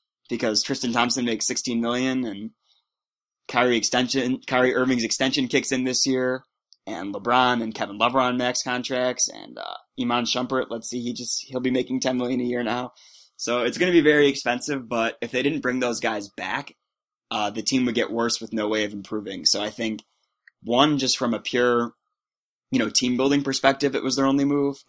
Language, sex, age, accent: English, male, 20-39, American